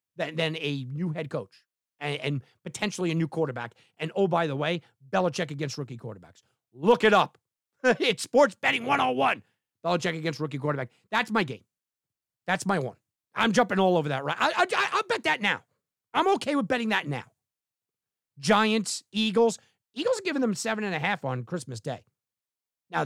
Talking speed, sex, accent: 175 wpm, male, American